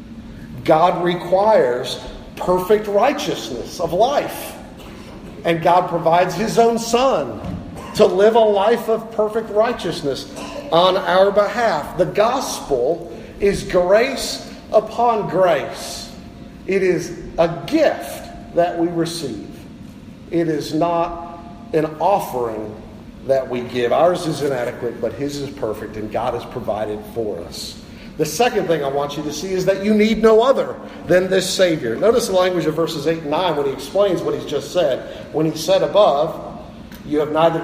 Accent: American